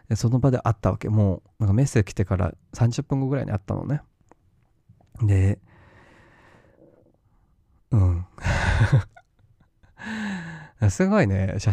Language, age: Japanese, 20-39